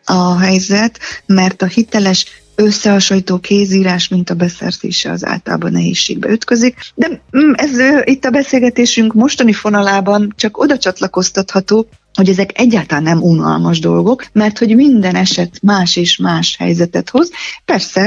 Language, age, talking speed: Hungarian, 30-49, 135 wpm